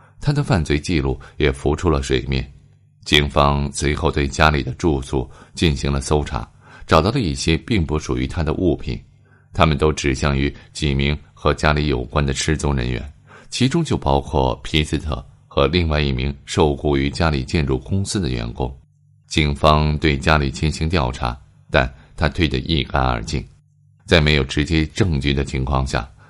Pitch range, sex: 70-80 Hz, male